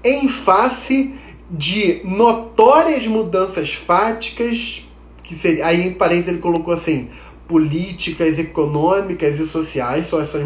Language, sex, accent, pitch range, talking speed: Portuguese, male, Brazilian, 165-225 Hz, 105 wpm